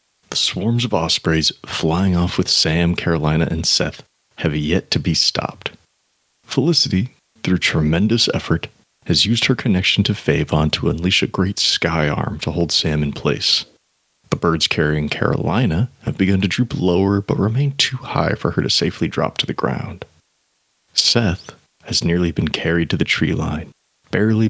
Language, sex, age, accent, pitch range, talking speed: English, male, 30-49, American, 80-105 Hz, 165 wpm